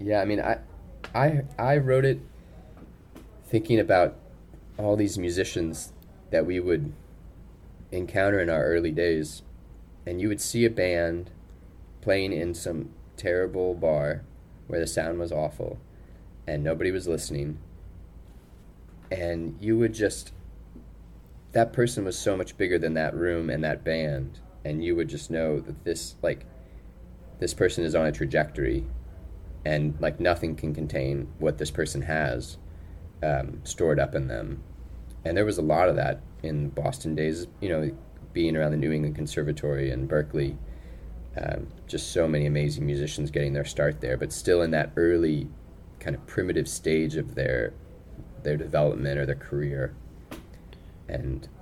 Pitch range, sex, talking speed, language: 75-90 Hz, male, 155 wpm, English